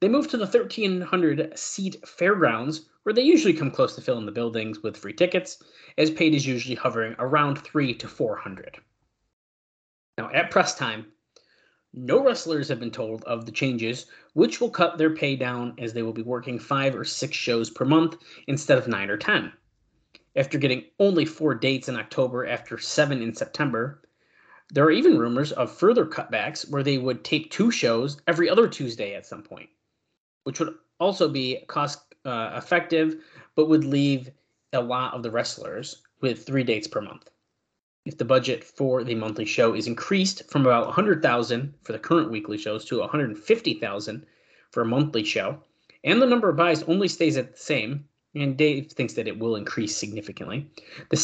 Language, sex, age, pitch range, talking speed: English, male, 20-39, 120-165 Hz, 180 wpm